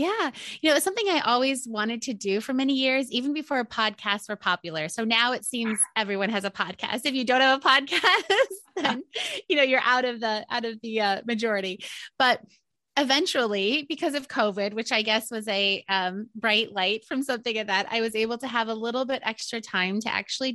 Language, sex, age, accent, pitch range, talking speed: English, female, 20-39, American, 190-245 Hz, 215 wpm